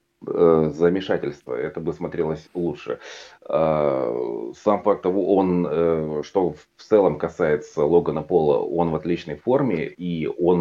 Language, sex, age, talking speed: Russian, male, 30-49, 120 wpm